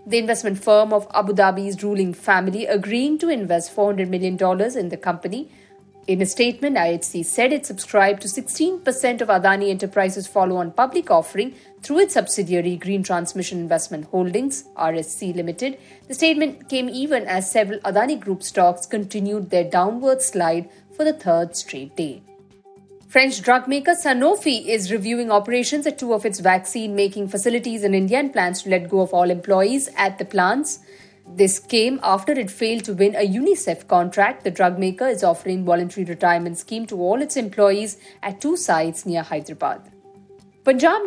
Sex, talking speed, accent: female, 165 wpm, Indian